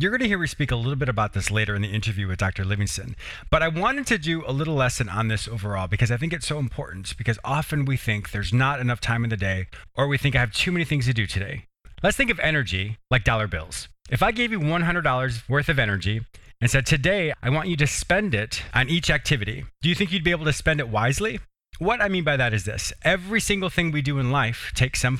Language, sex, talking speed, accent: English, male, 260 wpm, American